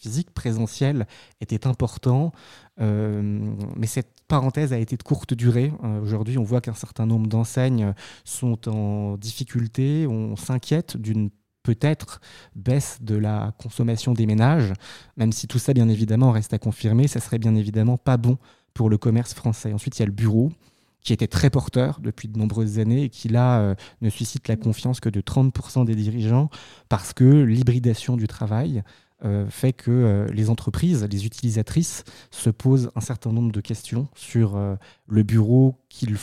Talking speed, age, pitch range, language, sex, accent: 170 wpm, 20-39, 110-130 Hz, French, male, French